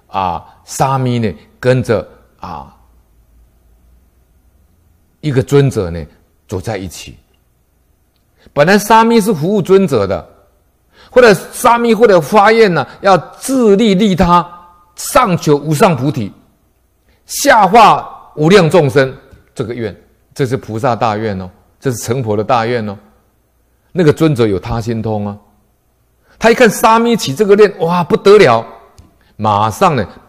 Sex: male